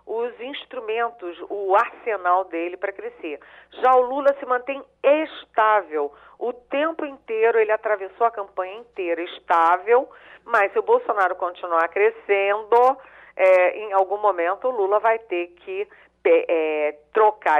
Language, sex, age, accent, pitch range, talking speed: Portuguese, female, 40-59, Brazilian, 180-250 Hz, 125 wpm